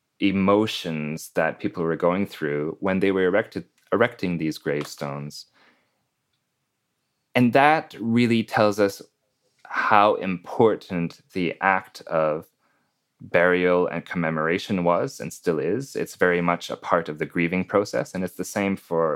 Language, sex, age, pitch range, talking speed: English, male, 30-49, 80-100 Hz, 140 wpm